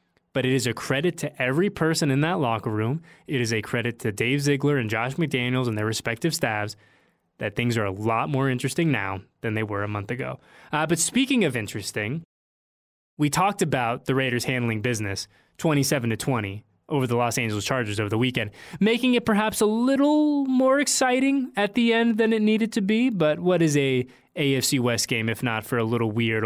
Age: 20-39